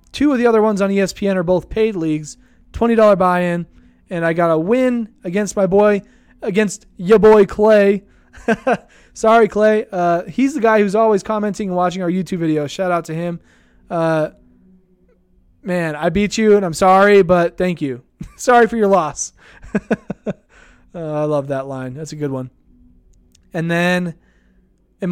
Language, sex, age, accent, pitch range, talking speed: English, male, 20-39, American, 165-210 Hz, 165 wpm